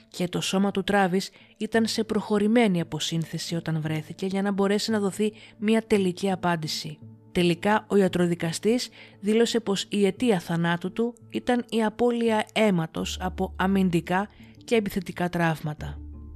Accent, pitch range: native, 165-215 Hz